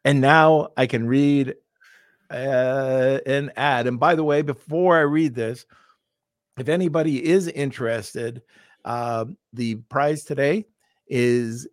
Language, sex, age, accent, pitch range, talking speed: English, male, 50-69, American, 120-150 Hz, 130 wpm